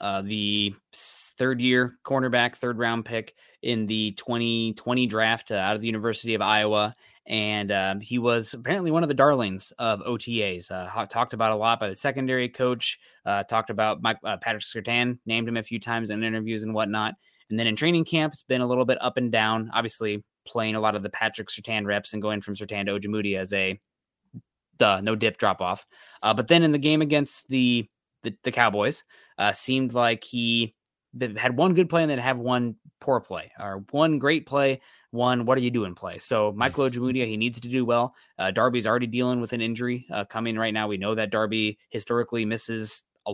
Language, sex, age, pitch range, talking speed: English, male, 20-39, 105-125 Hz, 205 wpm